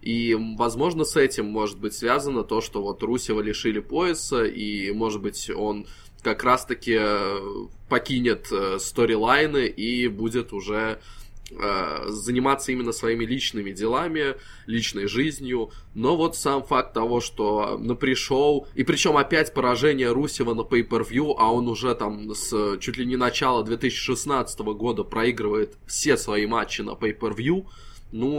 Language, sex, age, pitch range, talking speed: Russian, male, 20-39, 110-130 Hz, 135 wpm